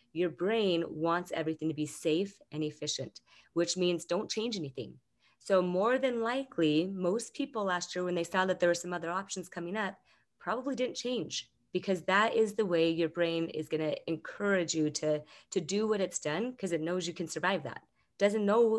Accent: American